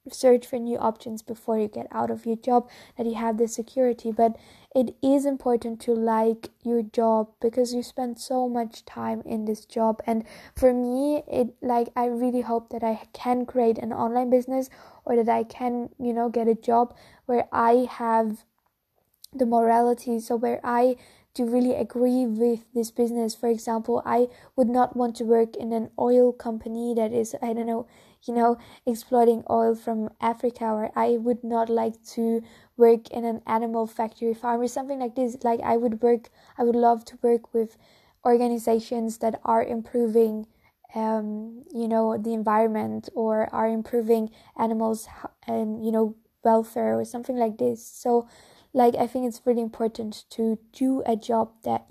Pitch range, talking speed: 225-245 Hz, 175 wpm